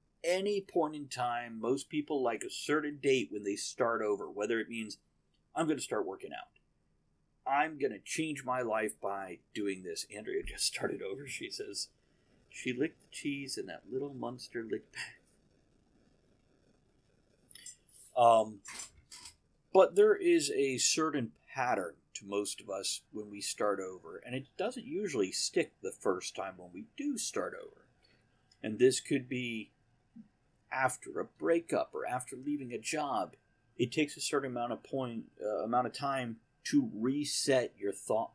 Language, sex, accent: English, male, American